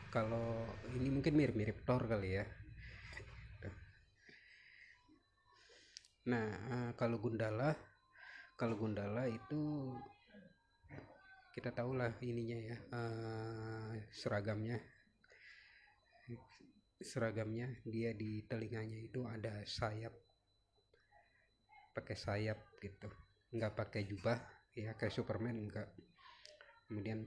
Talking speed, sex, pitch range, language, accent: 80 wpm, male, 100-120 Hz, Indonesian, native